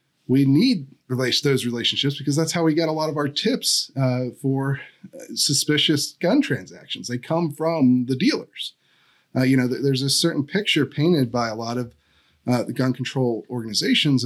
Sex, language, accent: male, English, American